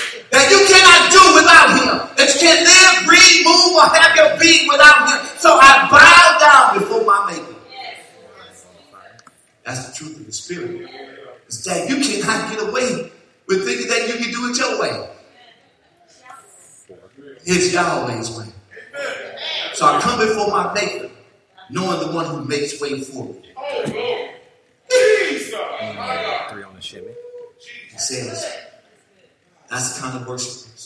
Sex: male